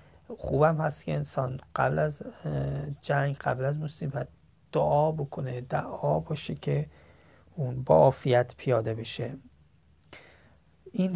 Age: 30-49